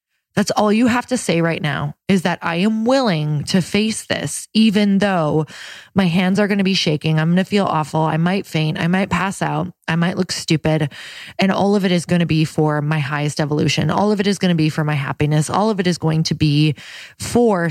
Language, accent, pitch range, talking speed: English, American, 160-210 Hz, 240 wpm